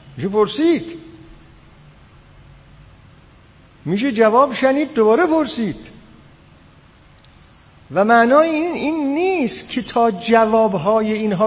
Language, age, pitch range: Persian, 50-69, 160-230 Hz